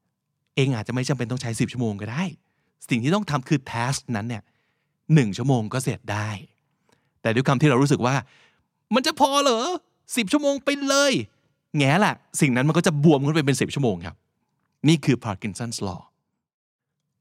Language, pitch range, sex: Thai, 115-160 Hz, male